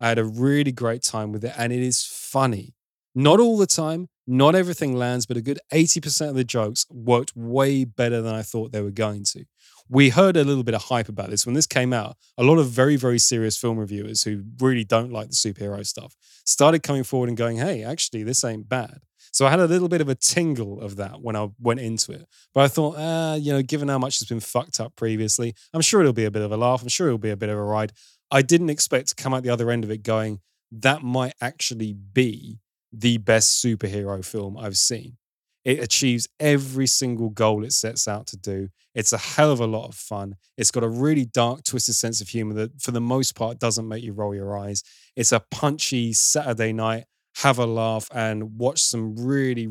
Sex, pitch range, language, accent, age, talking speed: male, 110-135 Hz, English, British, 20-39, 235 wpm